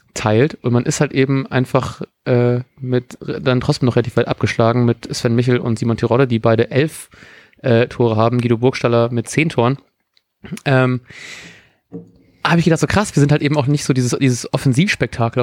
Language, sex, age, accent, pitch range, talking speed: German, male, 30-49, German, 120-155 Hz, 185 wpm